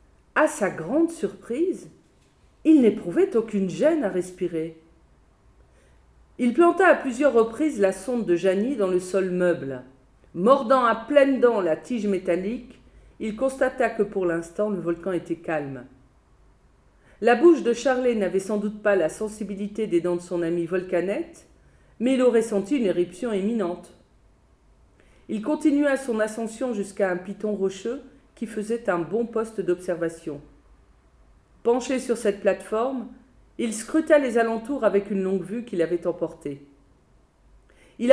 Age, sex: 40-59, female